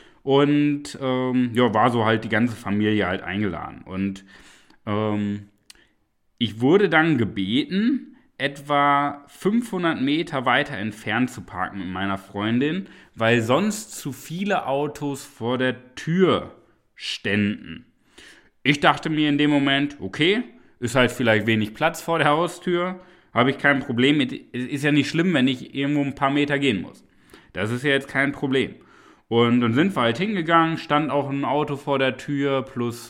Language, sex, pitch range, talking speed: German, male, 110-145 Hz, 160 wpm